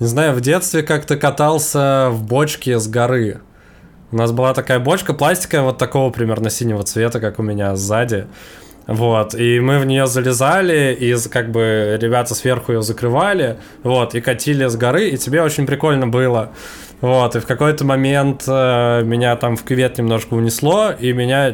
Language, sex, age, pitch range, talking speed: Russian, male, 20-39, 120-140 Hz, 170 wpm